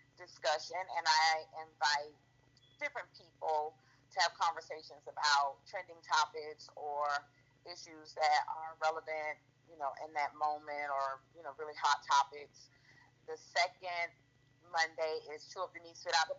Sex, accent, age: female, American, 40-59